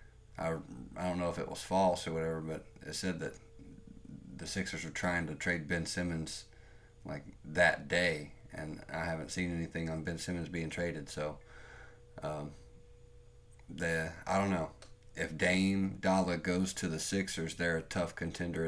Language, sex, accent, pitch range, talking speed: English, male, American, 85-95 Hz, 165 wpm